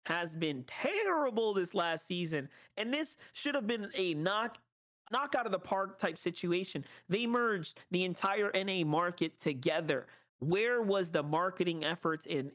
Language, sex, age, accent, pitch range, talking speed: English, male, 30-49, American, 155-190 Hz, 160 wpm